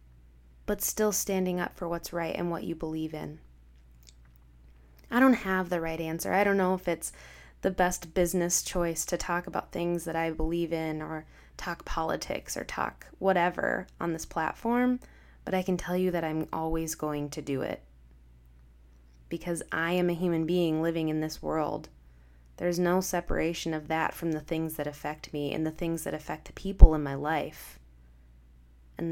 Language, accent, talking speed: English, American, 180 wpm